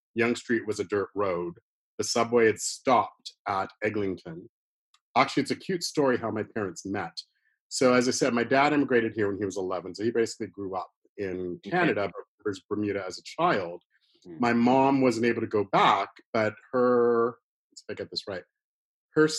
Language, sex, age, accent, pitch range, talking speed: English, male, 40-59, American, 115-150 Hz, 185 wpm